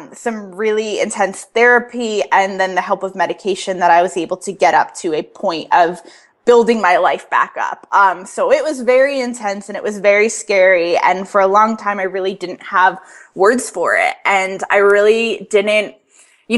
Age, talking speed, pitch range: 20-39, 195 wpm, 195-240 Hz